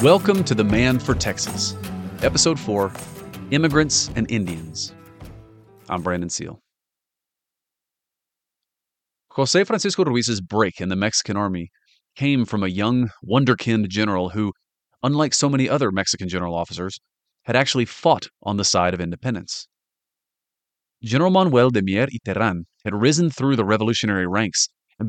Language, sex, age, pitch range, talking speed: English, male, 30-49, 100-135 Hz, 135 wpm